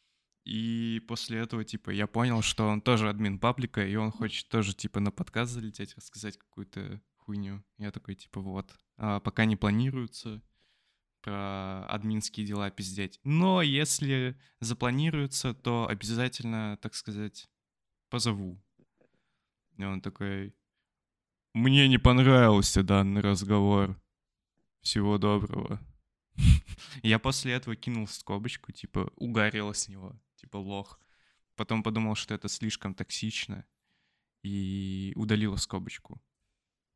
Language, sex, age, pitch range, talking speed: Russian, male, 20-39, 100-115 Hz, 115 wpm